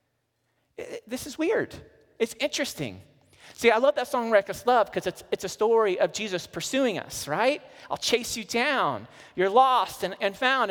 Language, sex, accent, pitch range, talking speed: English, male, American, 185-280 Hz, 175 wpm